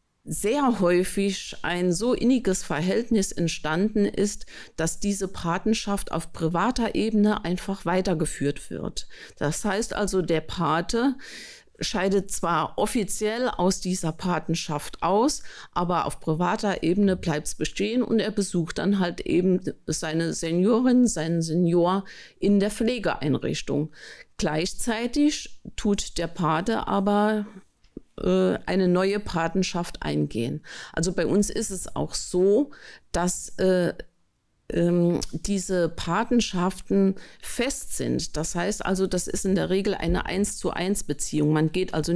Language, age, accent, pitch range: German, 50-69, German, 165-205 Hz